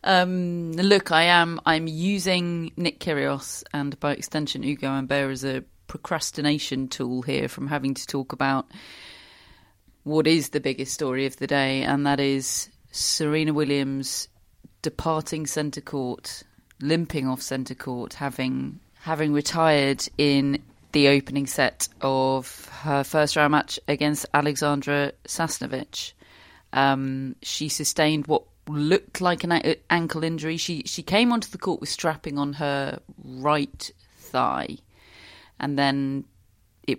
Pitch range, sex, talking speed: 135-160 Hz, female, 135 wpm